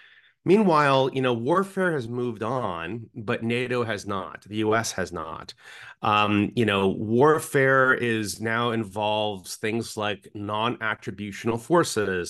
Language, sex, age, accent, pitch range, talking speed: English, male, 30-49, American, 105-135 Hz, 130 wpm